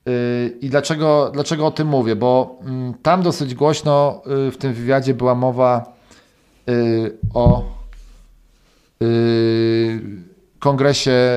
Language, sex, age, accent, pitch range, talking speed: Polish, male, 40-59, native, 120-145 Hz, 90 wpm